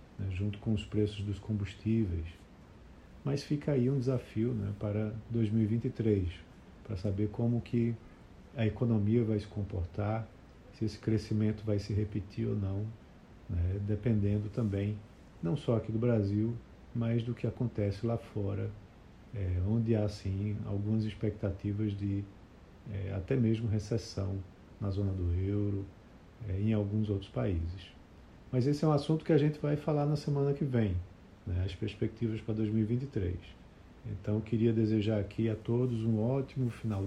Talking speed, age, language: 150 wpm, 40-59, Portuguese